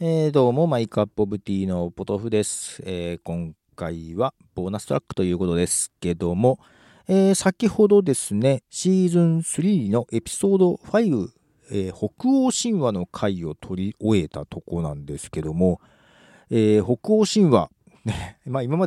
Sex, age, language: male, 40-59, Japanese